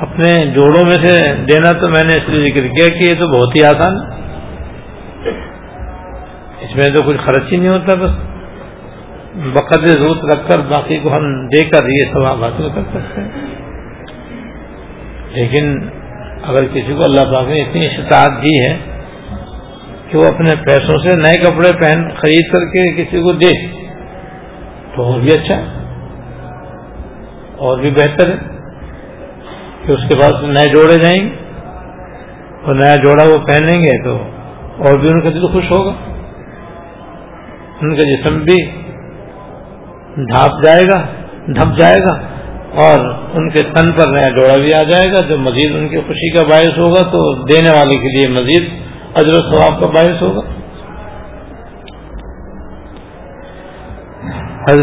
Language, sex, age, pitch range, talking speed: Urdu, male, 60-79, 140-170 Hz, 155 wpm